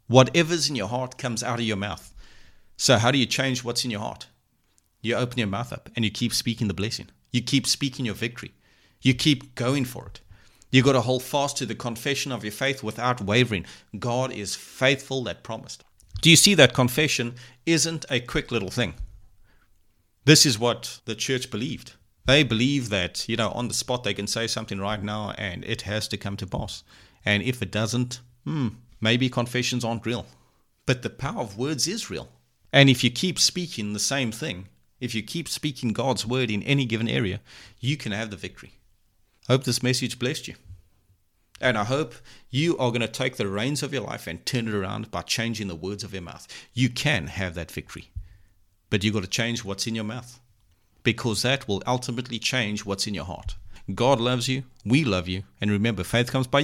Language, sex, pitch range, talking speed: English, male, 100-130 Hz, 210 wpm